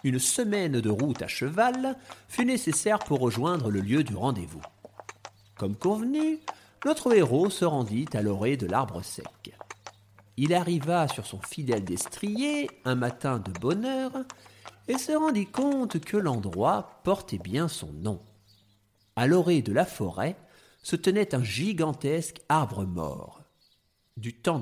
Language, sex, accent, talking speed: French, male, French, 145 wpm